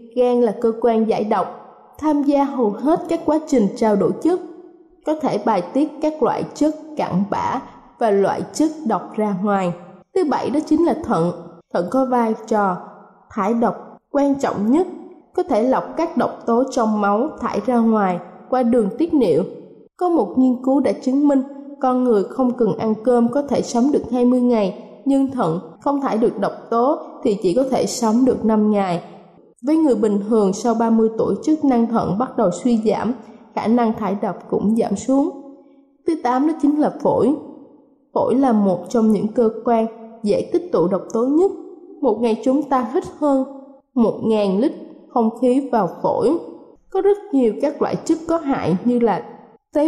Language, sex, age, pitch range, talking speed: Vietnamese, female, 20-39, 220-290 Hz, 190 wpm